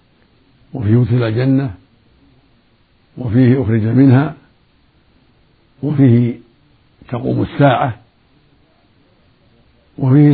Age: 60-79